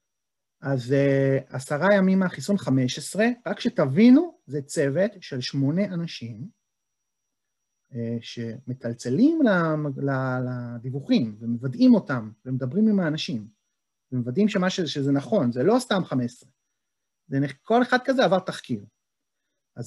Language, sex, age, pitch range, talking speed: Hebrew, male, 30-49, 125-200 Hz, 100 wpm